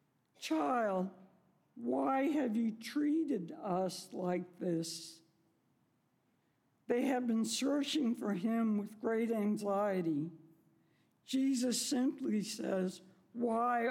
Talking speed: 90 wpm